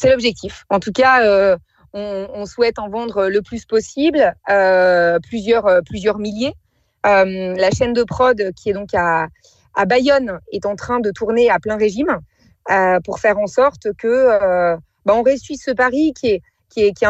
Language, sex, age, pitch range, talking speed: French, female, 30-49, 200-255 Hz, 190 wpm